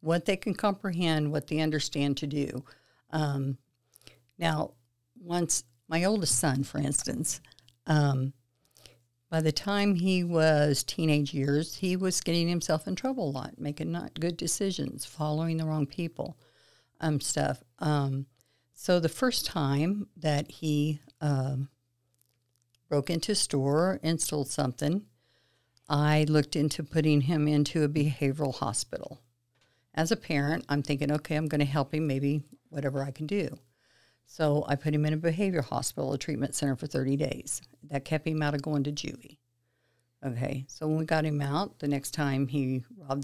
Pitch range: 135-155 Hz